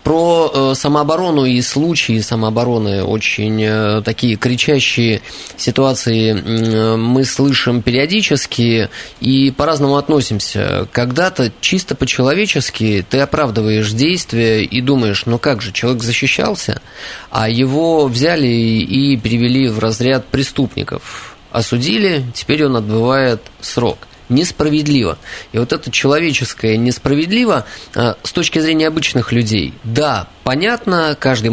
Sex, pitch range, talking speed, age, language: male, 115-150 Hz, 105 wpm, 20-39, Russian